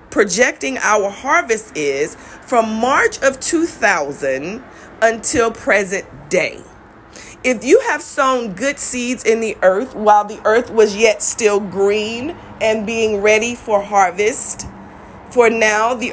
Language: English